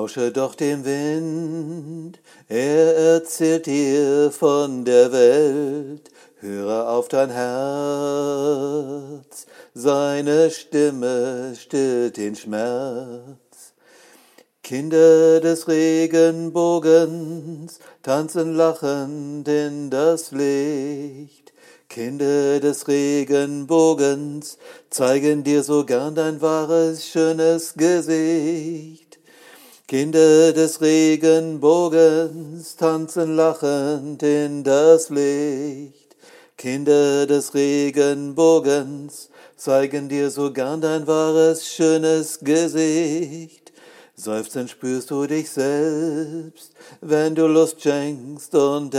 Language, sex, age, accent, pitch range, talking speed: German, male, 60-79, German, 140-160 Hz, 80 wpm